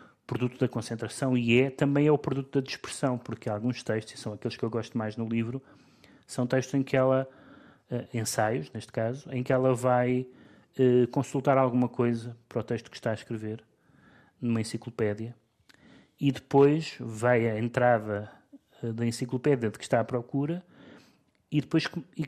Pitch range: 125-150 Hz